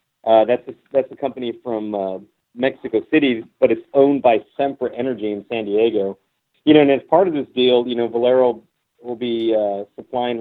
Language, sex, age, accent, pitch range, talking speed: English, male, 40-59, American, 110-130 Hz, 195 wpm